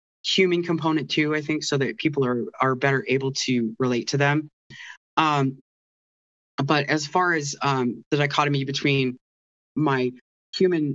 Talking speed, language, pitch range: 150 wpm, English, 130-155 Hz